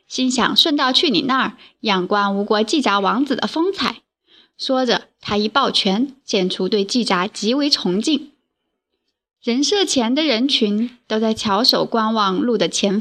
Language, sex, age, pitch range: Chinese, female, 20-39, 205-265 Hz